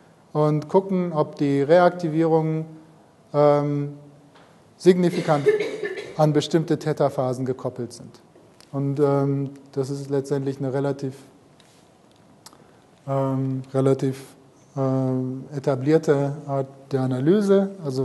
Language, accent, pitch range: German, German, 140-165 Hz